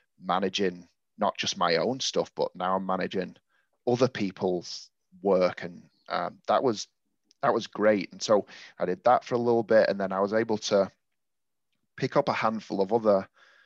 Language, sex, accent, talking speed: English, male, British, 180 wpm